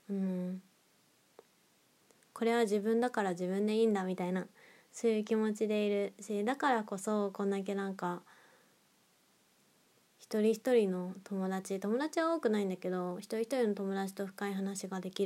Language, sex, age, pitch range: Japanese, female, 20-39, 195-240 Hz